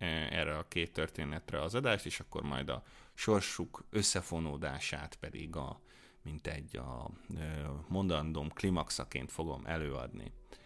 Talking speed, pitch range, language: 120 wpm, 80-115 Hz, Hungarian